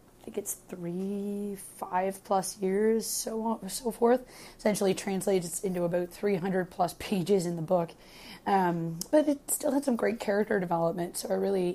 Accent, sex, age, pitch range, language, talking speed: American, female, 30-49, 180-210 Hz, English, 170 wpm